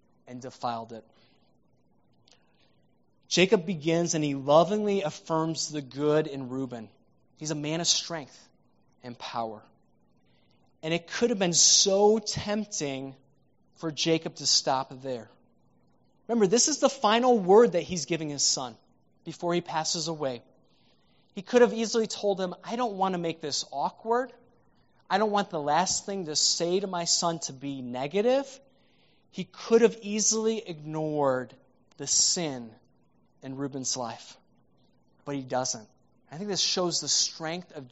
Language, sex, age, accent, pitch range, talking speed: English, male, 20-39, American, 135-185 Hz, 150 wpm